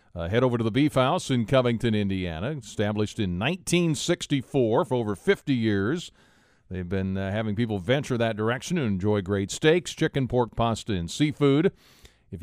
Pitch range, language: 100-130 Hz, English